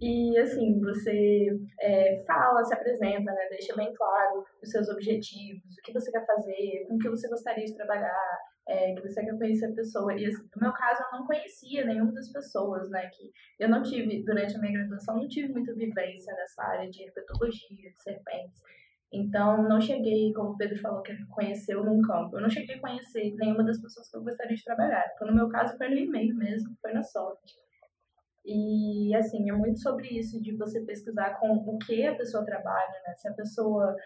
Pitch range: 200-230 Hz